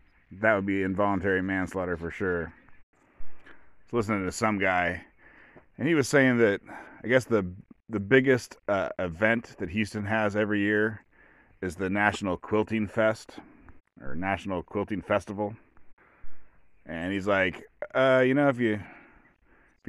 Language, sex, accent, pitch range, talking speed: English, male, American, 95-120 Hz, 145 wpm